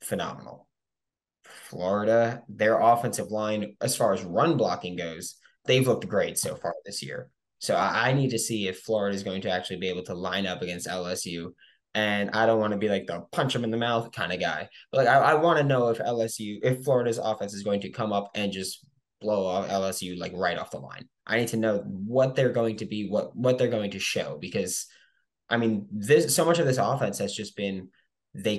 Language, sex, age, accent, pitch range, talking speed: English, male, 20-39, American, 95-115 Hz, 225 wpm